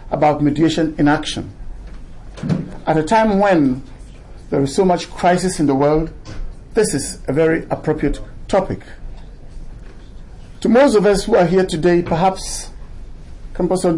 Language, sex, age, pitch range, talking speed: English, male, 50-69, 150-190 Hz, 135 wpm